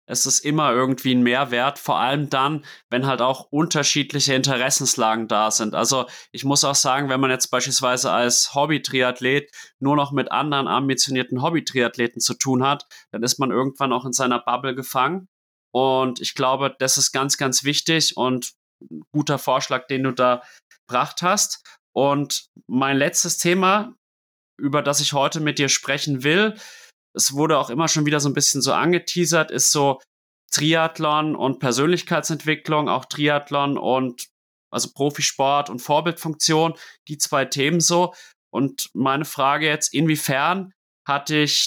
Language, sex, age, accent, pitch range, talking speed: German, male, 30-49, German, 130-150 Hz, 155 wpm